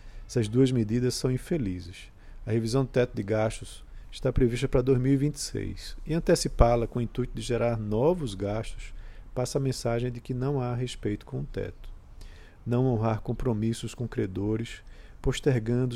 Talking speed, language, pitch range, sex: 155 wpm, Portuguese, 105-130 Hz, male